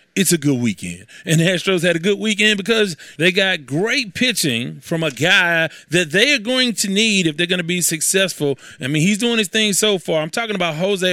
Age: 30-49